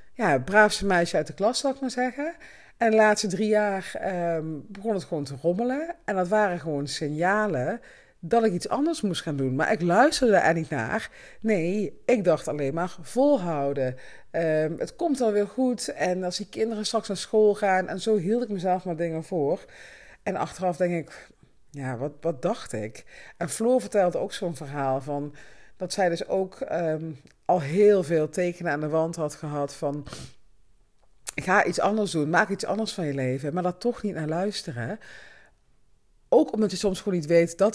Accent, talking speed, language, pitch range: Dutch, 195 wpm, Dutch, 160-210 Hz